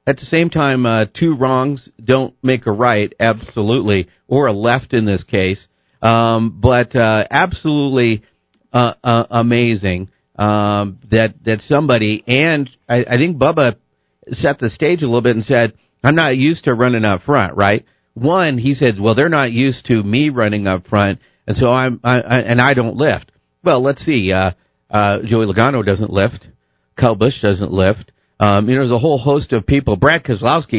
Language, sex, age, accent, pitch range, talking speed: English, male, 50-69, American, 105-135 Hz, 185 wpm